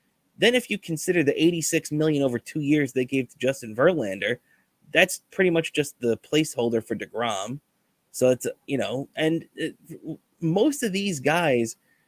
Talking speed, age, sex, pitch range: 165 wpm, 30-49, male, 120-160 Hz